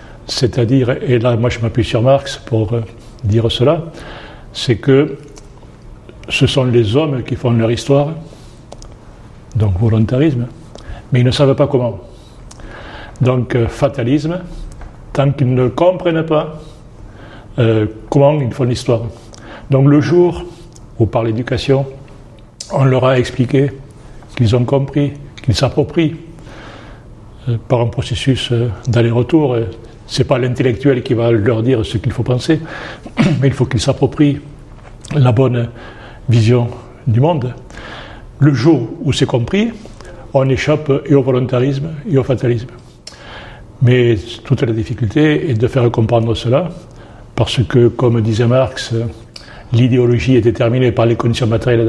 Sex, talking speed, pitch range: male, 135 wpm, 115-140 Hz